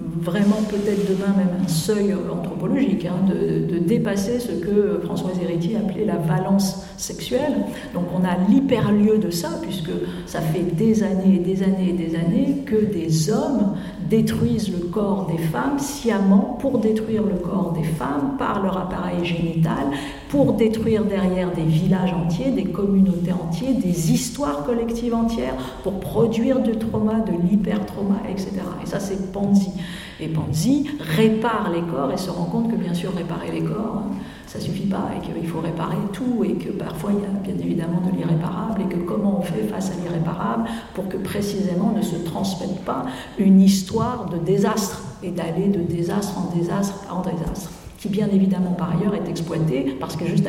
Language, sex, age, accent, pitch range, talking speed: French, female, 50-69, French, 175-210 Hz, 180 wpm